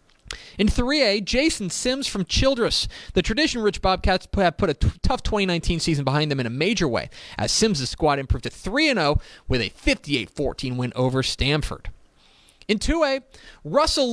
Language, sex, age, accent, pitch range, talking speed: English, male, 30-49, American, 145-240 Hz, 155 wpm